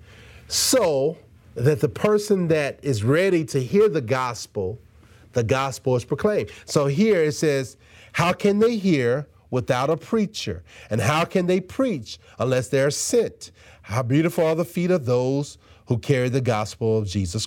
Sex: male